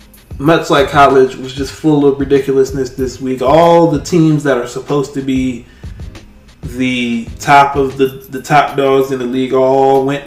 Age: 20-39